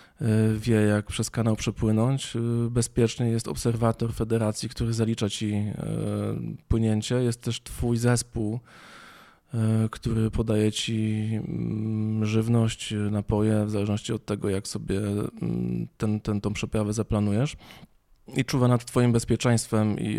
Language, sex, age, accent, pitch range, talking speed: Polish, male, 20-39, native, 105-120 Hz, 115 wpm